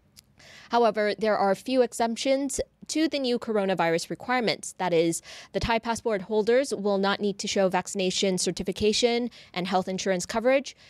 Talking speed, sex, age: 155 wpm, female, 20-39